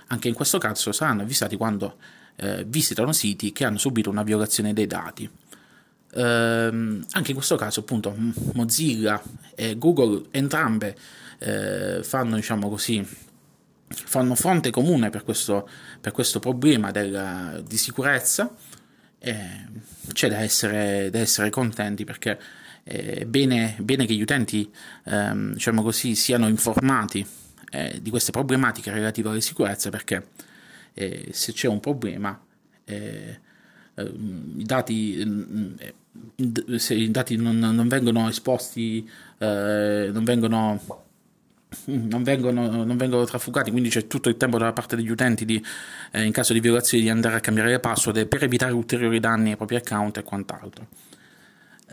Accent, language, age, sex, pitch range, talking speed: native, Italian, 30-49, male, 105-125 Hz, 145 wpm